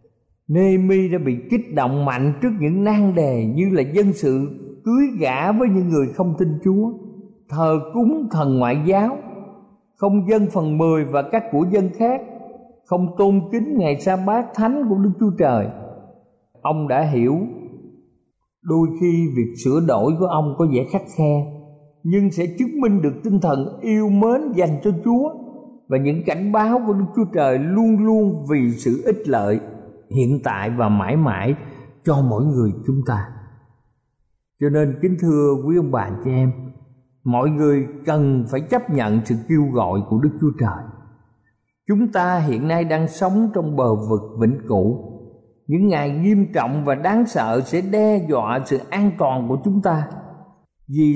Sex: male